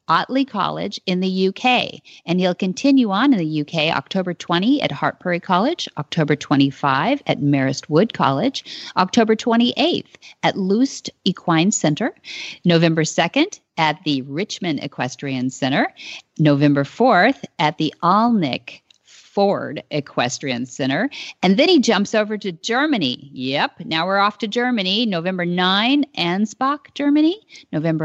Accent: American